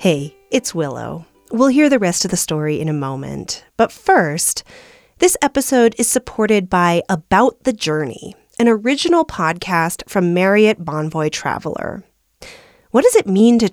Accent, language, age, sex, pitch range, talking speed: American, English, 30-49, female, 170-255 Hz, 155 wpm